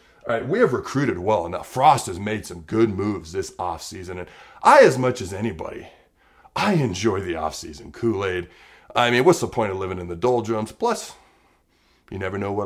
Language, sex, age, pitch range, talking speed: English, male, 40-59, 95-125 Hz, 195 wpm